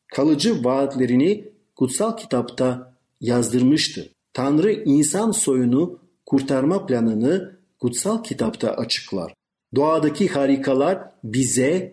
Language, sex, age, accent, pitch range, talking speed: Turkish, male, 50-69, native, 130-180 Hz, 80 wpm